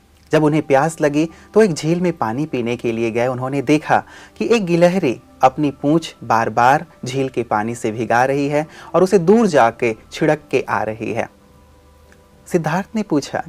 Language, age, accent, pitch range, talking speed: Hindi, 30-49, native, 110-160 Hz, 180 wpm